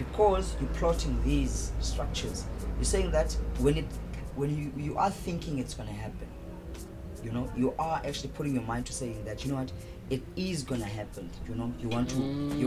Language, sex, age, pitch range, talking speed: English, female, 20-39, 100-140 Hz, 210 wpm